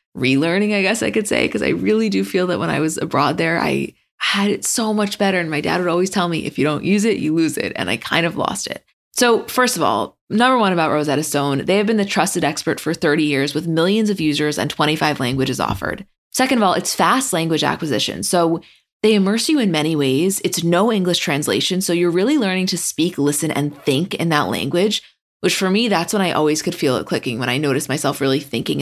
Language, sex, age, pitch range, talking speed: English, female, 20-39, 150-195 Hz, 245 wpm